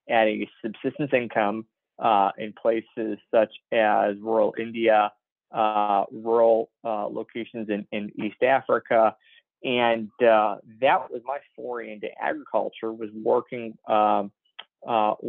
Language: English